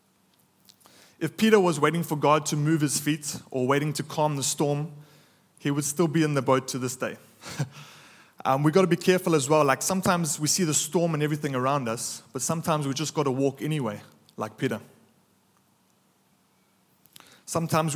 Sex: male